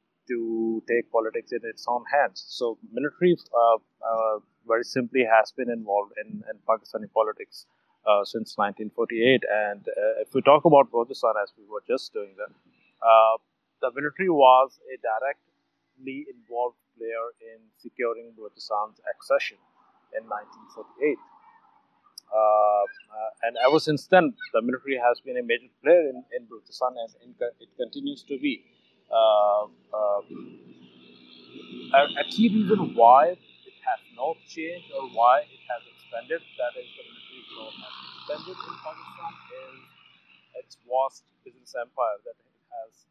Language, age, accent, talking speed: English, 30-49, Indian, 140 wpm